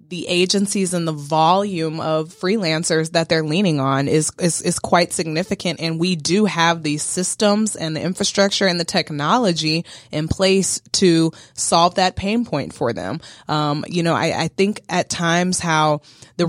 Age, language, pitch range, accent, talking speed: 20-39, English, 155-195 Hz, American, 170 wpm